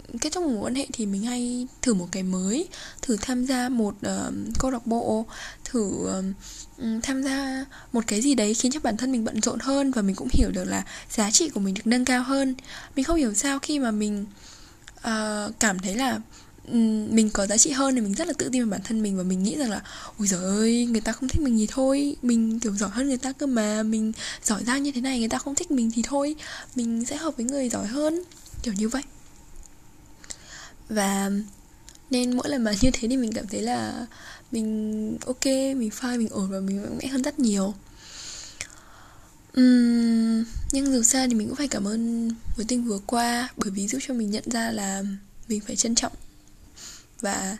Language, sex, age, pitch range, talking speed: Vietnamese, female, 10-29, 215-260 Hz, 220 wpm